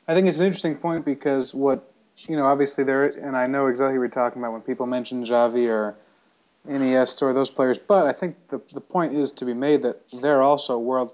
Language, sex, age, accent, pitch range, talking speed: English, male, 30-49, American, 125-145 Hz, 230 wpm